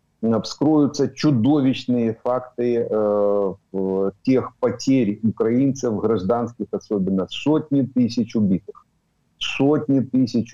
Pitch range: 110-135 Hz